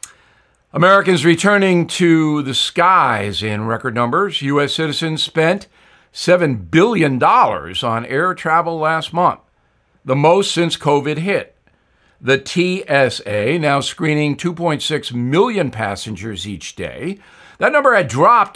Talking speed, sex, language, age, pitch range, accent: 115 wpm, male, English, 60-79, 140-180 Hz, American